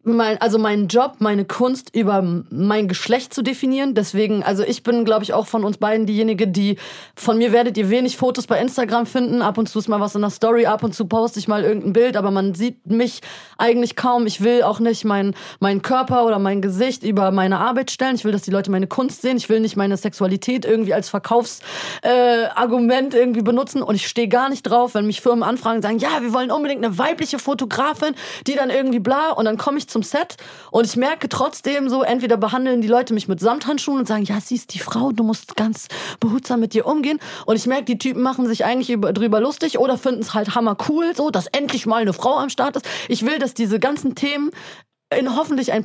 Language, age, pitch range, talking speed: German, 30-49, 215-255 Hz, 230 wpm